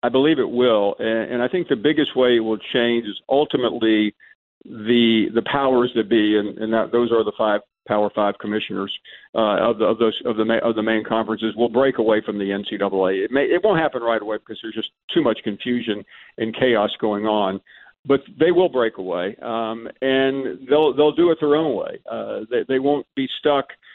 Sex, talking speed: male, 215 wpm